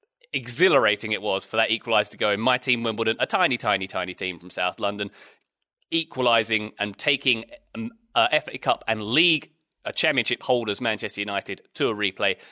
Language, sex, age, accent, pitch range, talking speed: English, male, 30-49, British, 105-135 Hz, 175 wpm